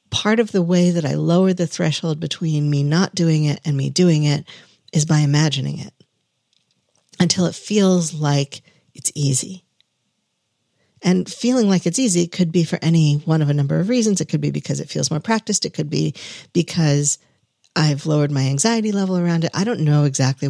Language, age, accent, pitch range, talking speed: English, 50-69, American, 145-180 Hz, 195 wpm